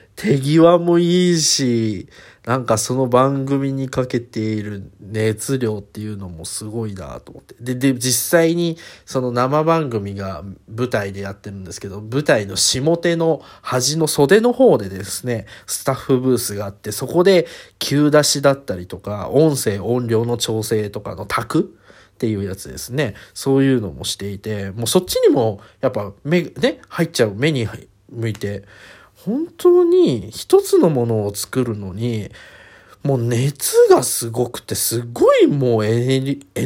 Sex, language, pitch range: male, Japanese, 105-165 Hz